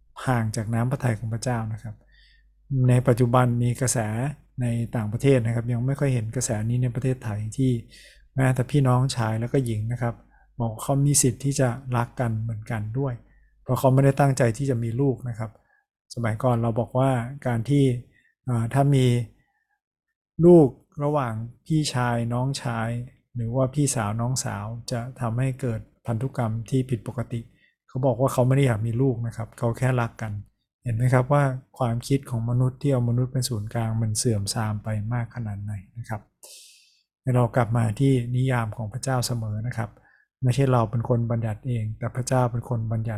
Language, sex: Thai, male